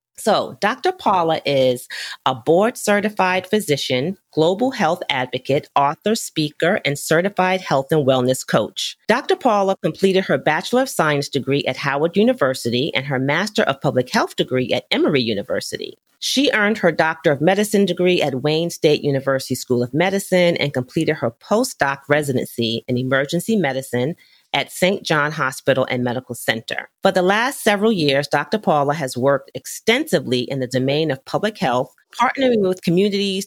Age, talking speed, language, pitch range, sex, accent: 40-59, 155 wpm, English, 135-195 Hz, female, American